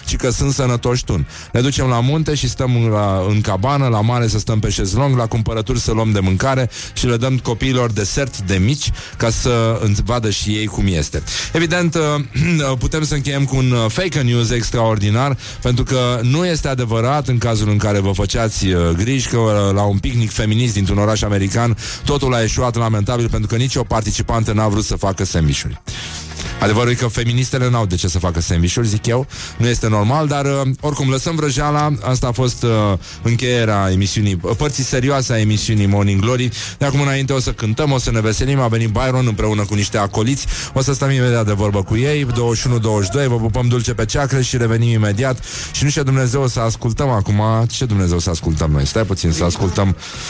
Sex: male